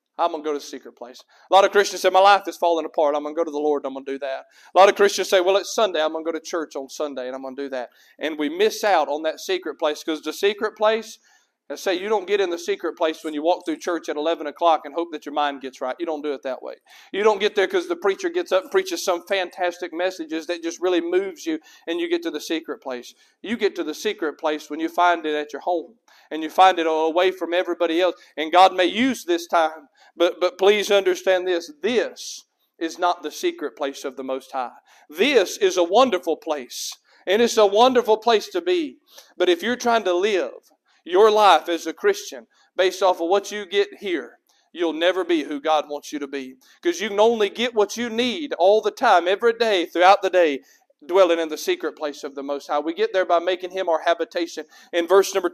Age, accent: 40-59, American